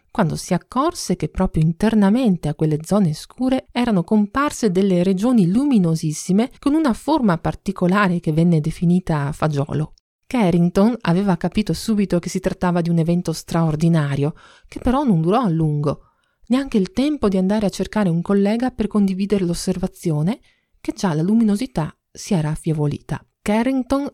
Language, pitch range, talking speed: Italian, 170-220 Hz, 150 wpm